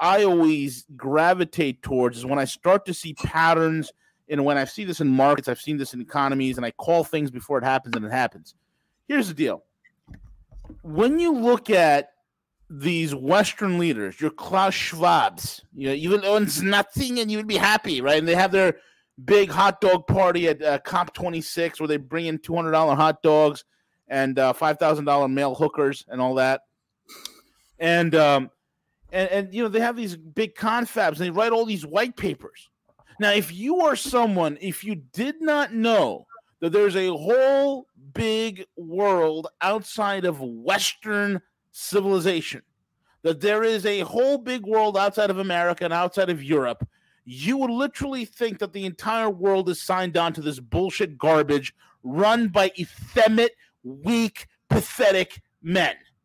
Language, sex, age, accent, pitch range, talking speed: English, male, 30-49, American, 150-210 Hz, 165 wpm